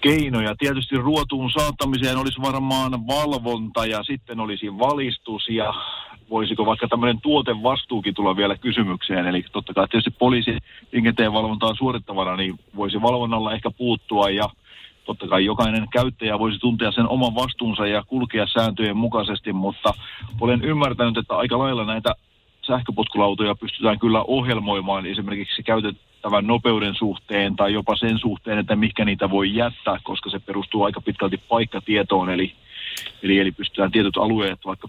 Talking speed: 145 wpm